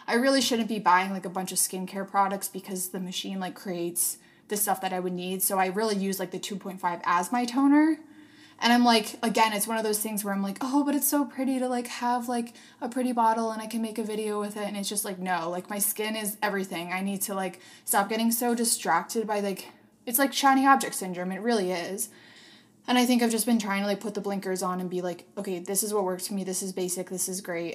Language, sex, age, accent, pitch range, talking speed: English, female, 20-39, American, 195-245 Hz, 260 wpm